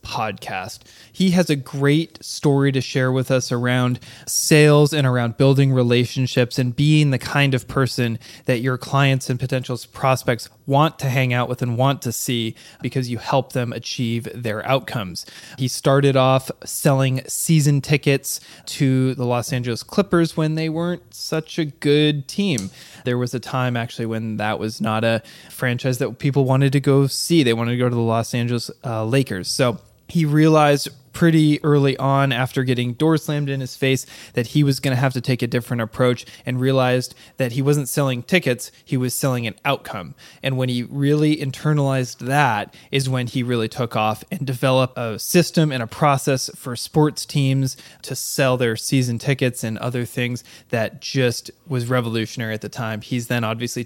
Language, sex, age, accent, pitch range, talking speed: English, male, 20-39, American, 120-140 Hz, 185 wpm